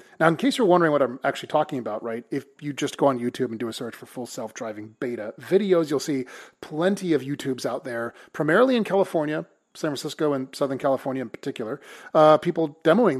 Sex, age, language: male, 30-49, English